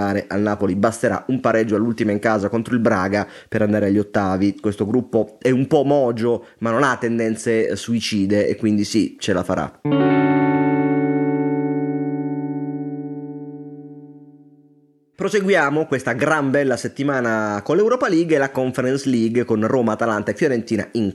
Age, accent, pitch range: 30-49, native, 105-145 Hz